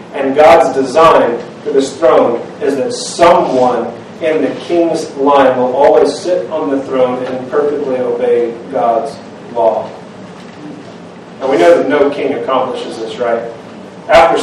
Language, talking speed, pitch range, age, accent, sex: English, 140 wpm, 130-180 Hz, 40-59, American, male